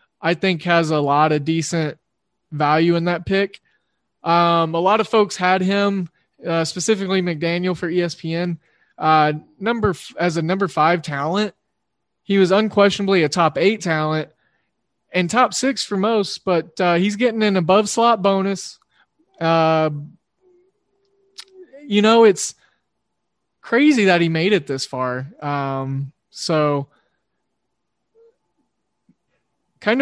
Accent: American